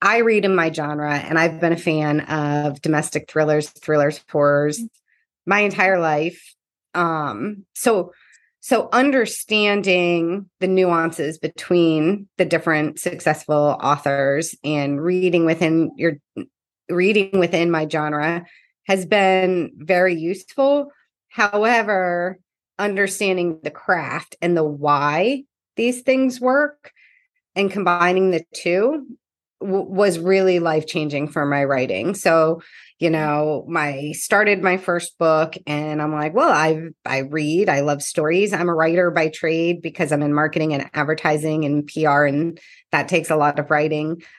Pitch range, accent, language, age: 150-190 Hz, American, English, 30-49